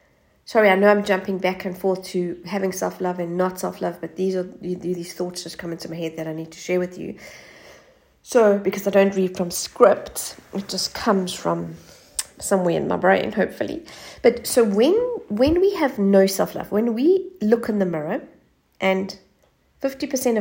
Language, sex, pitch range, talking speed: English, female, 185-245 Hz, 185 wpm